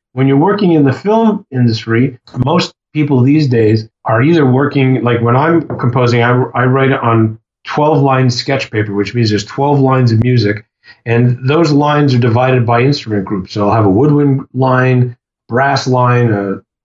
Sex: male